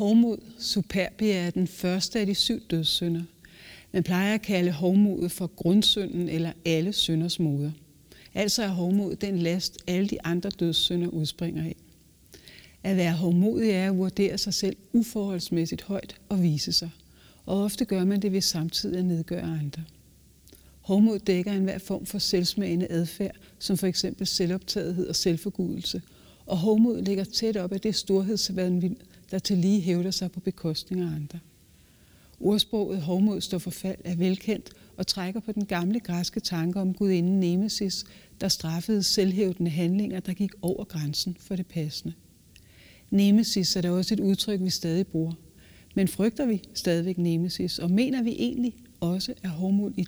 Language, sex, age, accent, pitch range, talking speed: Danish, female, 60-79, native, 175-200 Hz, 160 wpm